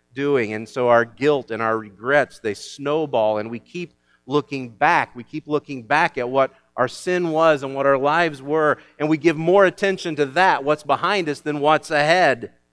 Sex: male